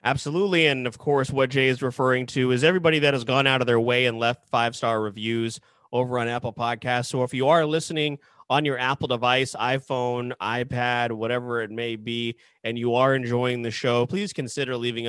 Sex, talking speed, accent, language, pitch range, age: male, 200 wpm, American, English, 115-140 Hz, 30-49